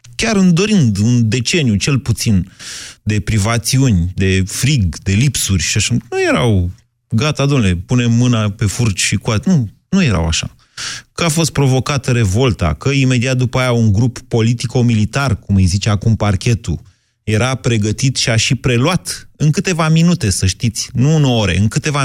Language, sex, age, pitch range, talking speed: Romanian, male, 30-49, 95-130 Hz, 170 wpm